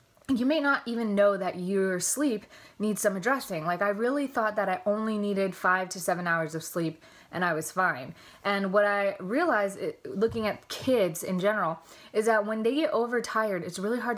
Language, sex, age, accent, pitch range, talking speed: English, female, 20-39, American, 185-225 Hz, 200 wpm